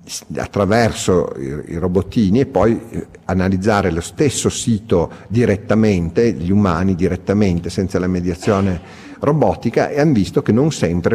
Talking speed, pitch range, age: 125 wpm, 85-105 Hz, 50-69